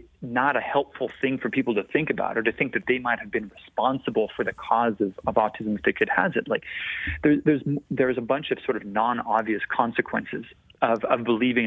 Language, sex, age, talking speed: English, male, 30-49, 215 wpm